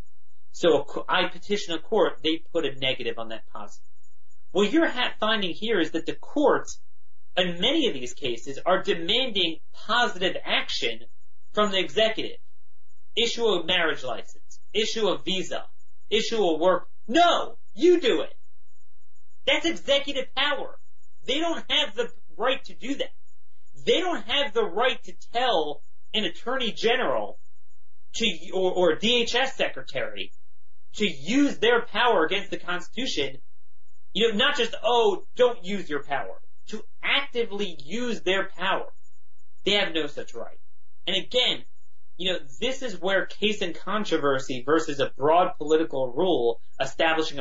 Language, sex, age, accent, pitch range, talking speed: English, male, 40-59, American, 165-250 Hz, 145 wpm